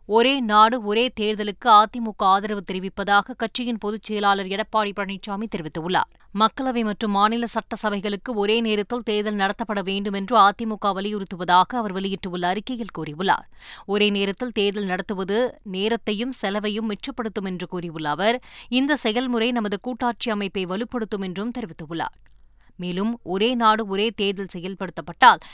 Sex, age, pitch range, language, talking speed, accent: female, 20-39, 200-240 Hz, Tamil, 125 wpm, native